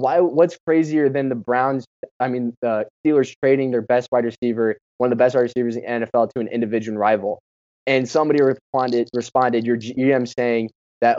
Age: 20-39